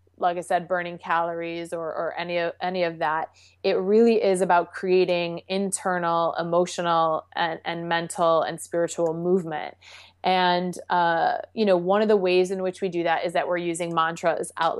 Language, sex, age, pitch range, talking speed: English, female, 20-39, 180-225 Hz, 180 wpm